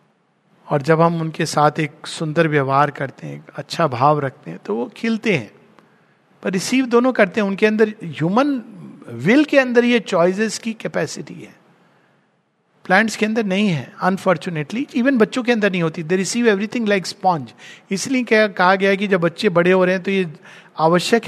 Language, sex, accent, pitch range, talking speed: Hindi, male, native, 160-215 Hz, 185 wpm